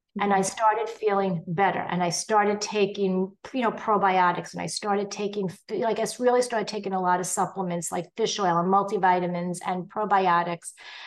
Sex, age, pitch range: female, 50-69, 190-230 Hz